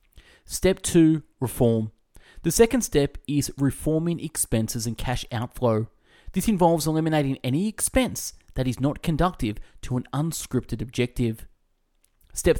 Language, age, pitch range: English, 20-39, 115-160 Hz